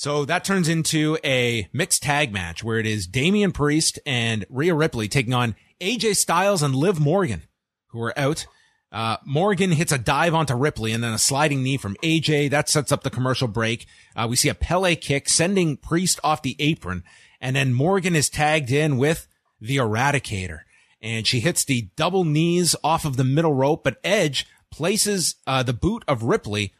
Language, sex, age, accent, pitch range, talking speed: English, male, 30-49, American, 125-170 Hz, 190 wpm